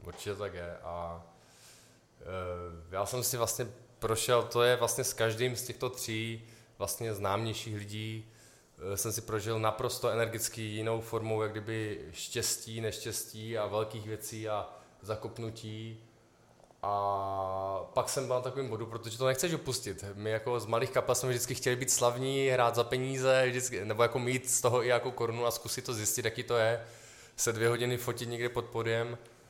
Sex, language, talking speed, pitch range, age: male, Czech, 175 wpm, 110-125 Hz, 20-39